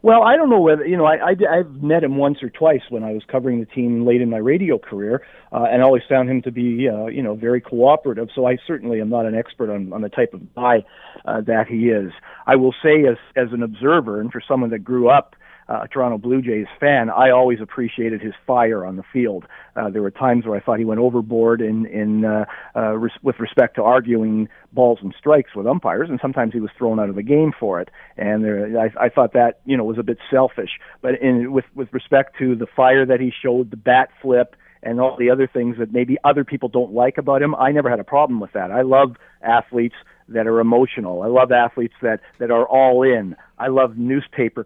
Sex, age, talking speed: male, 40-59, 245 wpm